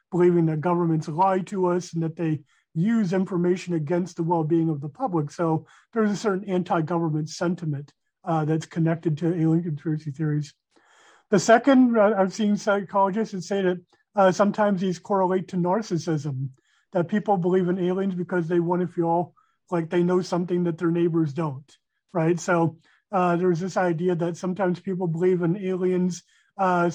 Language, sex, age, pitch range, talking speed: English, male, 40-59, 165-190 Hz, 165 wpm